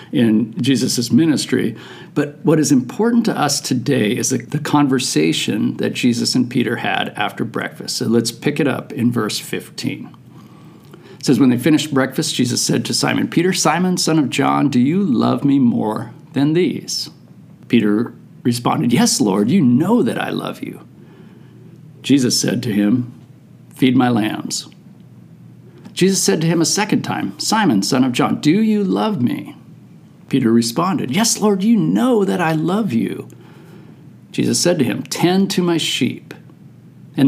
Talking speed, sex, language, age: 165 wpm, male, English, 50-69